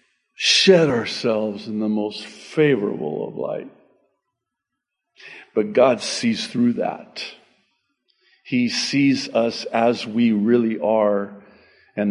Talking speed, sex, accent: 105 wpm, male, American